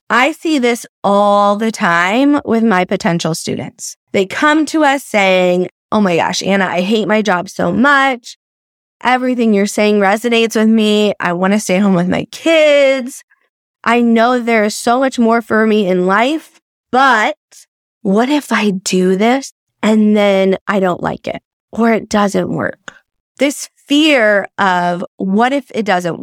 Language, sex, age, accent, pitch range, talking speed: English, female, 20-39, American, 200-270 Hz, 165 wpm